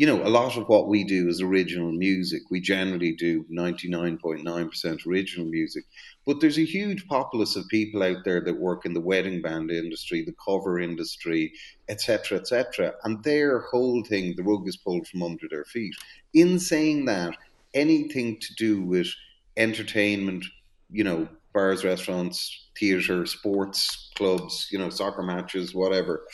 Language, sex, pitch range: English, male, 90-120 Hz